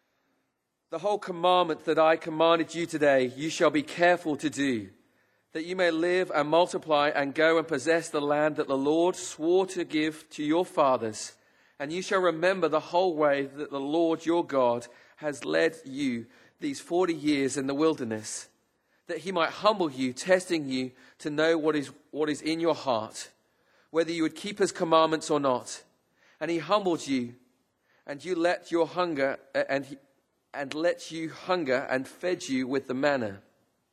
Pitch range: 135-170 Hz